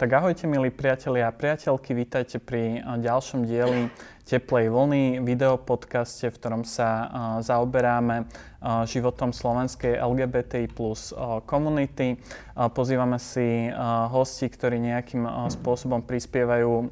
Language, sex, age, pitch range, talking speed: Slovak, male, 20-39, 120-130 Hz, 105 wpm